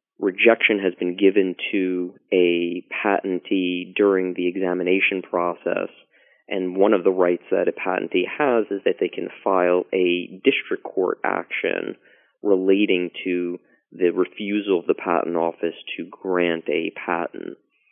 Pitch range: 85-95 Hz